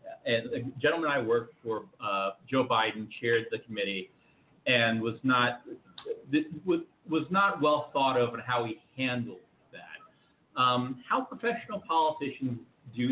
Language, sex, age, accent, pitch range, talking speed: English, male, 40-59, American, 125-190 Hz, 135 wpm